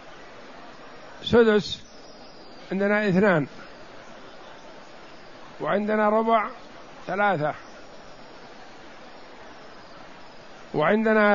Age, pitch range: 60-79, 175-215 Hz